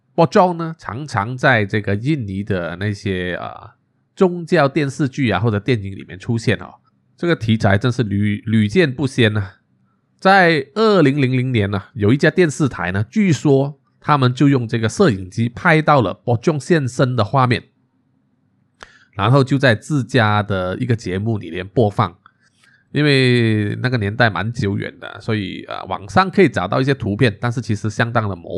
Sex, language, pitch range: male, Chinese, 105-140 Hz